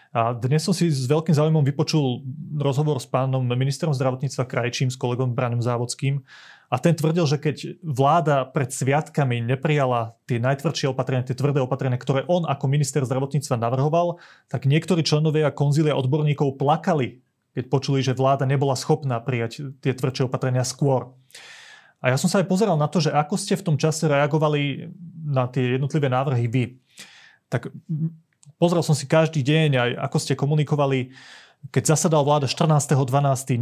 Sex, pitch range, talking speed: male, 130-155 Hz, 160 wpm